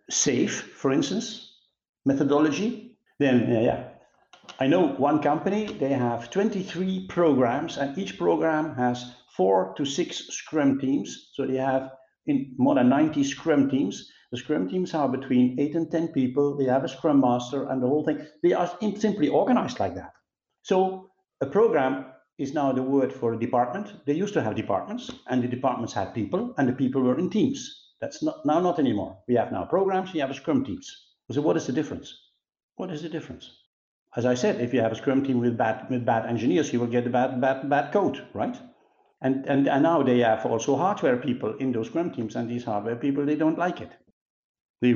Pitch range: 125-175 Hz